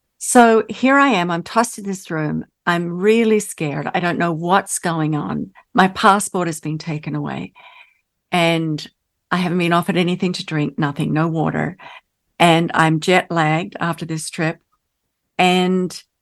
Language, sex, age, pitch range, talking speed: English, female, 50-69, 165-205 Hz, 160 wpm